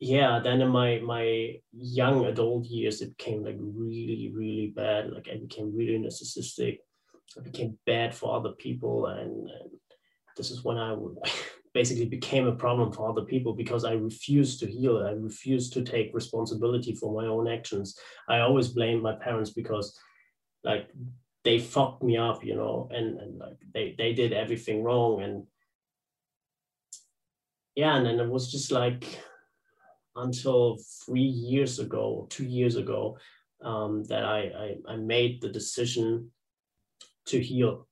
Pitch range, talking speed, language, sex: 110-125 Hz, 155 wpm, English, male